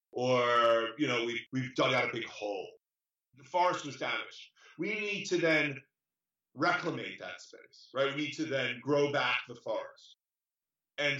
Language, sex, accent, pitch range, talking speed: English, male, American, 140-170 Hz, 165 wpm